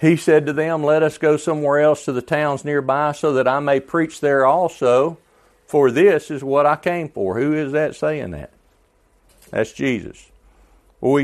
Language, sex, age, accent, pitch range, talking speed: English, male, 50-69, American, 100-150 Hz, 185 wpm